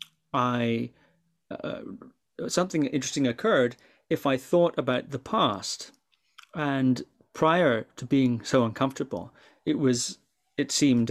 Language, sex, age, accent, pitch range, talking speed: English, male, 30-49, British, 120-145 Hz, 115 wpm